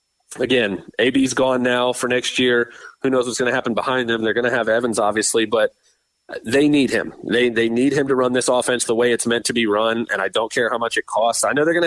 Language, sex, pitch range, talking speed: English, male, 115-140 Hz, 265 wpm